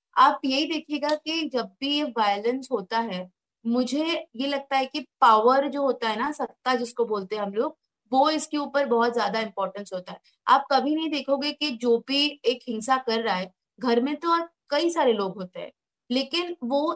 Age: 30-49